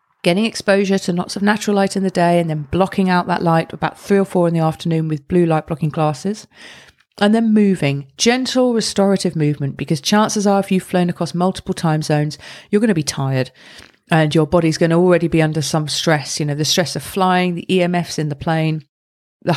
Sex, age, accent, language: female, 40-59, British, English